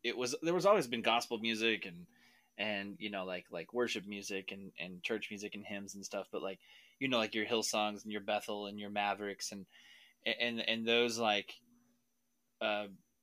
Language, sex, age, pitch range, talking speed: English, male, 20-39, 100-115 Hz, 200 wpm